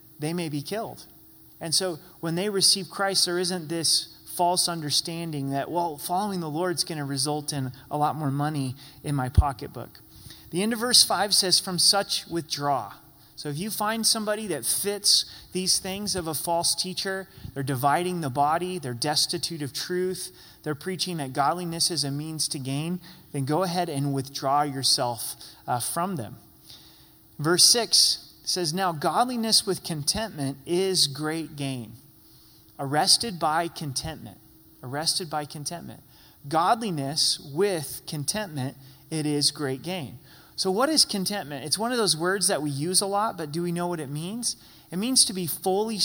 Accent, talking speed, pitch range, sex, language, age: American, 170 wpm, 145-190 Hz, male, English, 30-49